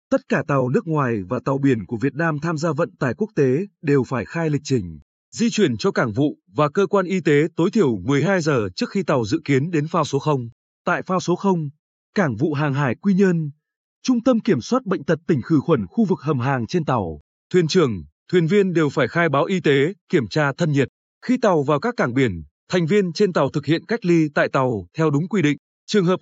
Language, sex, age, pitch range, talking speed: Vietnamese, male, 20-39, 140-190 Hz, 245 wpm